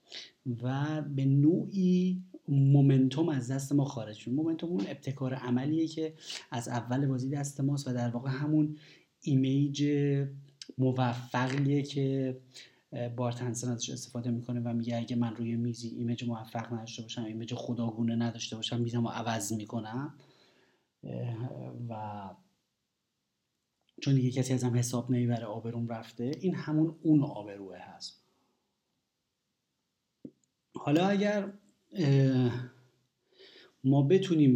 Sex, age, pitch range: male, 30-49, 120-140 Hz